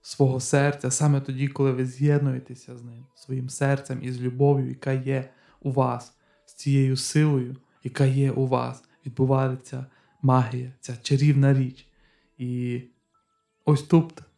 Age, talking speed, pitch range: 20-39, 140 wpm, 125-140 Hz